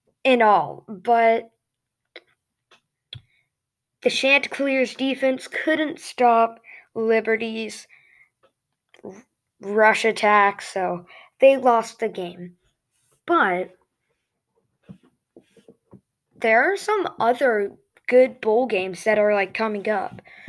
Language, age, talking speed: English, 20-39, 85 wpm